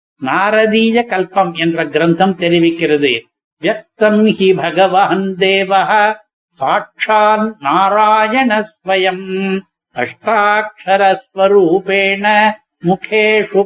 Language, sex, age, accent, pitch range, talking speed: Tamil, male, 60-79, native, 190-245 Hz, 55 wpm